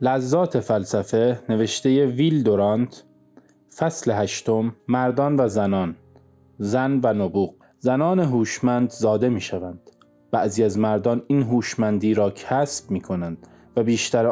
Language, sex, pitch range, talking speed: Persian, male, 110-145 Hz, 115 wpm